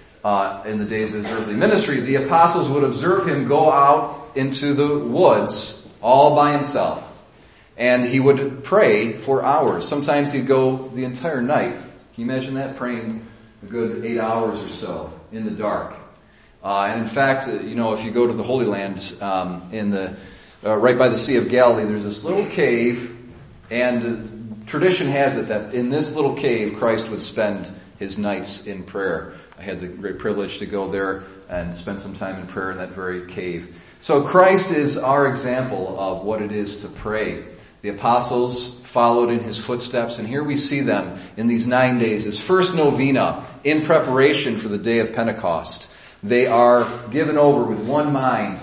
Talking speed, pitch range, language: 185 wpm, 105-135 Hz, English